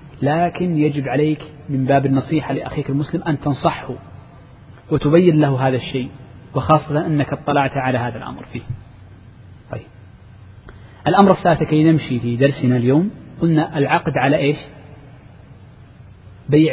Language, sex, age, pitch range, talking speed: Arabic, male, 40-59, 120-150 Hz, 120 wpm